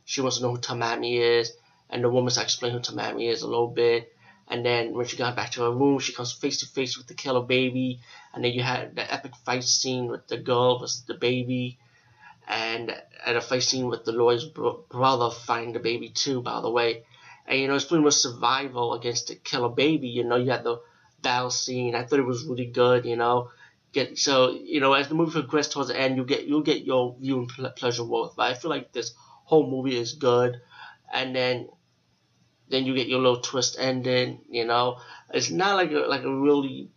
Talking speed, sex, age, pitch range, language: 220 wpm, male, 30-49, 120-135 Hz, English